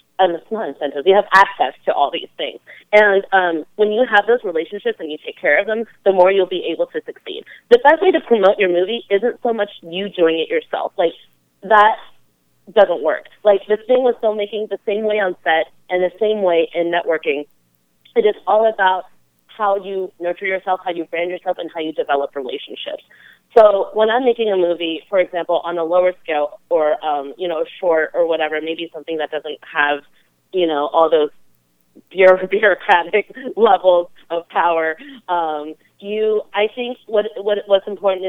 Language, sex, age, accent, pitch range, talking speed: English, female, 30-49, American, 165-210 Hz, 195 wpm